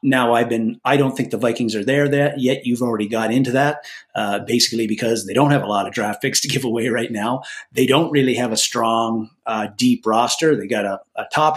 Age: 30-49